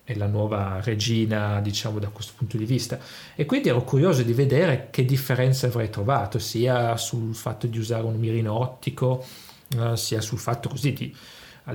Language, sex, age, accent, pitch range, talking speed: English, male, 30-49, Italian, 110-135 Hz, 170 wpm